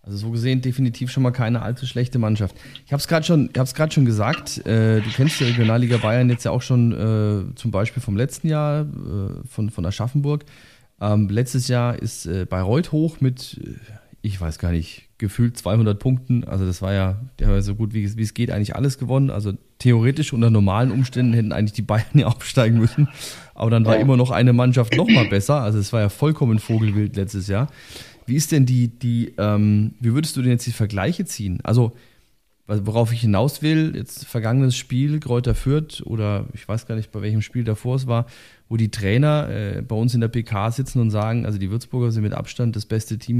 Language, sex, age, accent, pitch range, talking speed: German, male, 30-49, German, 105-130 Hz, 205 wpm